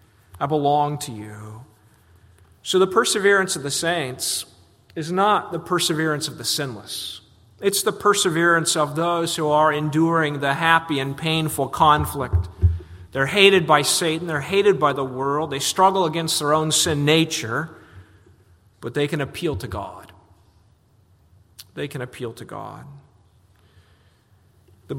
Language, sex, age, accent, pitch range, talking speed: English, male, 40-59, American, 105-160 Hz, 140 wpm